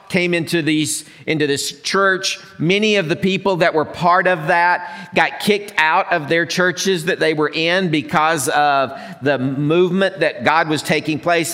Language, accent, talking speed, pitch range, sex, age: English, American, 175 wpm, 150-195 Hz, male, 50-69